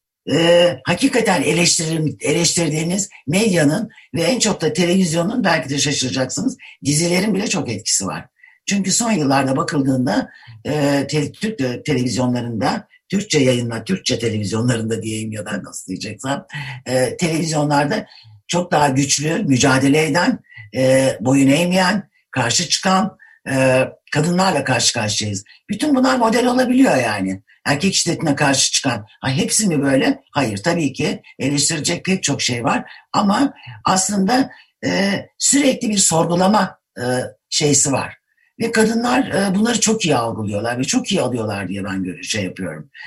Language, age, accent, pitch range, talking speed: Turkish, 60-79, native, 130-200 Hz, 130 wpm